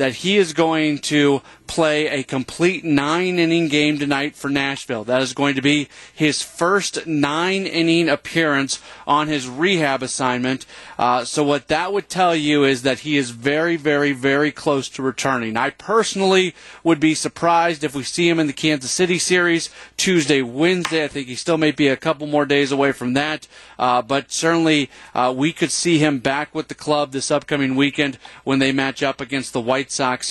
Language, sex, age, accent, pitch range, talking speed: English, male, 40-59, American, 135-170 Hz, 190 wpm